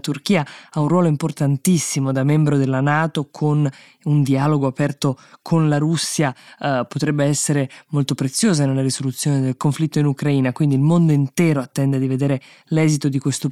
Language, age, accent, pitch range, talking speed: Italian, 20-39, native, 135-165 Hz, 165 wpm